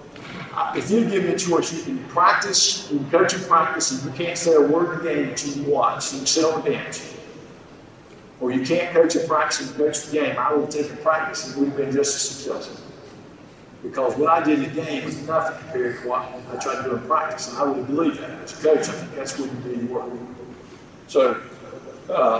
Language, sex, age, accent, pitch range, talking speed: English, male, 50-69, American, 140-160 Hz, 235 wpm